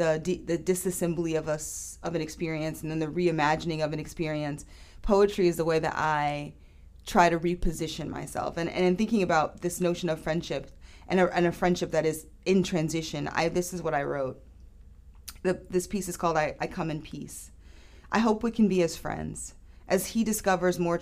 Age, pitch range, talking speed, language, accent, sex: 30-49, 150-180 Hz, 190 wpm, English, American, female